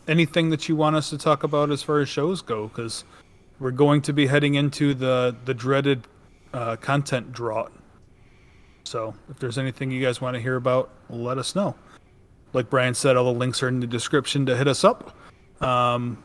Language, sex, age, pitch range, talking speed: English, male, 30-49, 125-150 Hz, 200 wpm